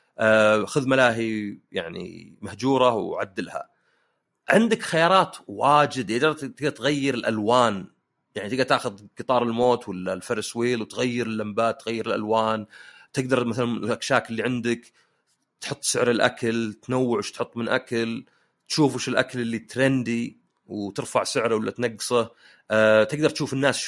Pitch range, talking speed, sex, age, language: 110-145 Hz, 125 wpm, male, 30-49, Arabic